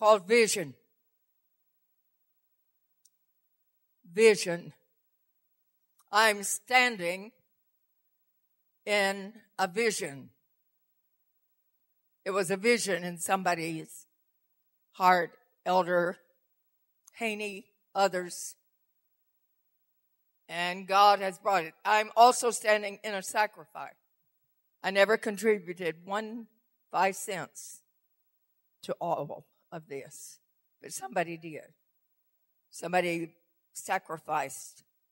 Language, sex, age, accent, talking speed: English, female, 60-79, American, 75 wpm